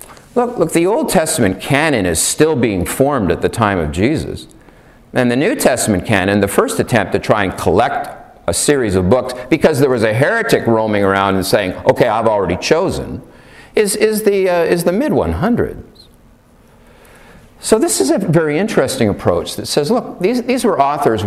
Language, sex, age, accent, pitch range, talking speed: English, male, 50-69, American, 105-165 Hz, 185 wpm